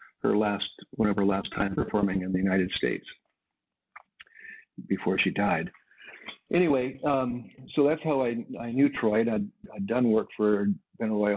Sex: male